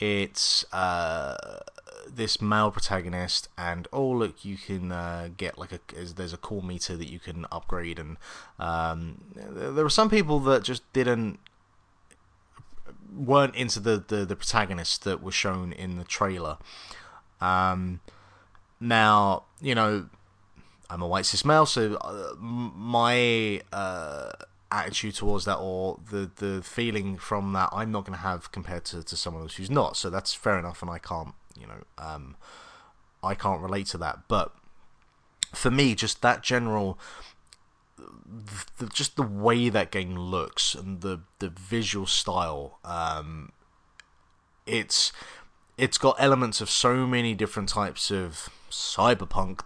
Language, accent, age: English, British, 30-49